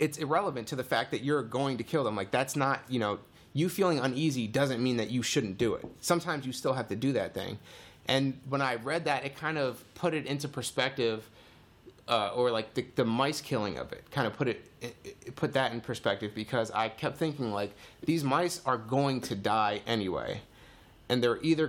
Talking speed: 220 wpm